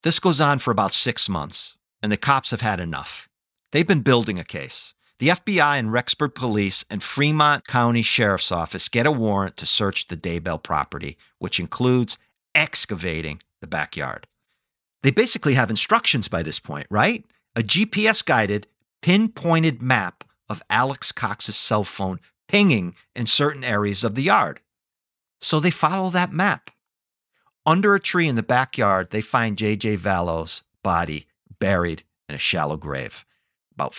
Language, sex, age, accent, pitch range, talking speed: English, male, 50-69, American, 95-145 Hz, 155 wpm